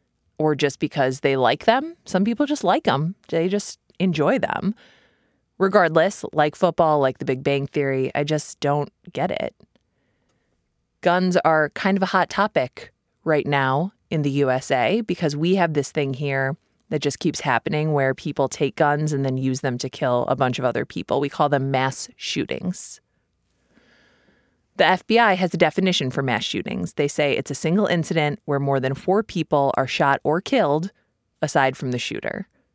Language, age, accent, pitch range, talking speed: English, 20-39, American, 140-185 Hz, 180 wpm